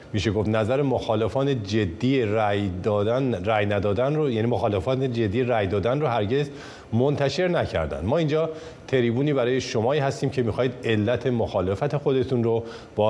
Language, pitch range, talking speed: Persian, 100-125 Hz, 145 wpm